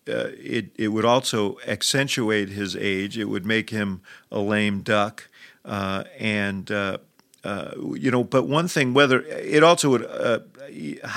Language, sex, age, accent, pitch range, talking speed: English, male, 50-69, American, 105-120 Hz, 155 wpm